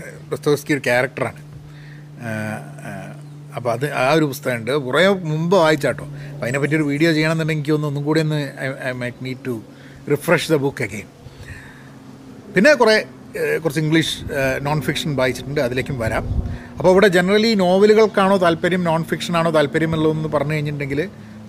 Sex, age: male, 30-49